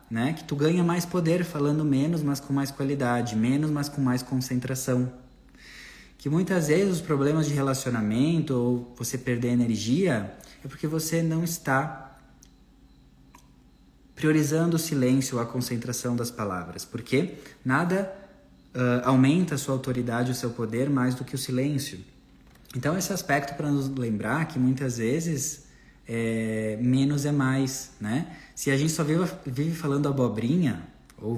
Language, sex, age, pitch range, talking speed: Portuguese, male, 20-39, 120-145 Hz, 150 wpm